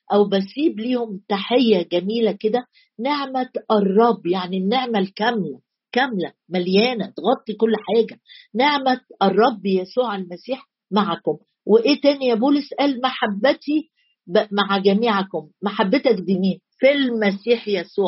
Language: Arabic